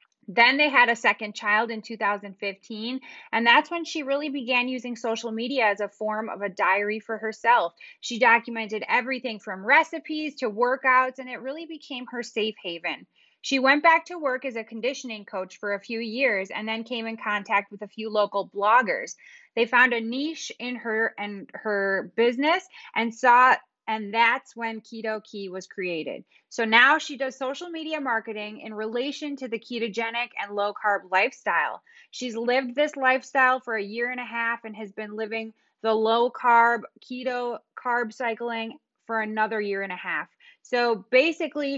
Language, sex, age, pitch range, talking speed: English, female, 20-39, 215-260 Hz, 180 wpm